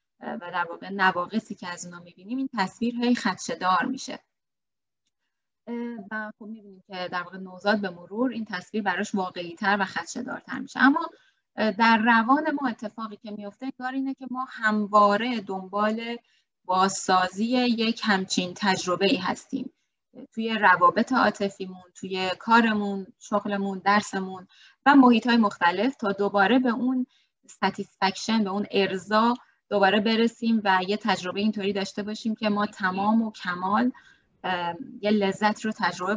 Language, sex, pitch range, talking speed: Persian, female, 190-235 Hz, 140 wpm